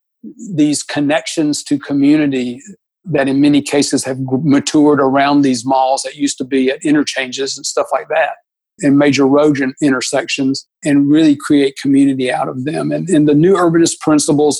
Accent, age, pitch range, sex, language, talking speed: American, 50-69, 135-150 Hz, male, English, 165 wpm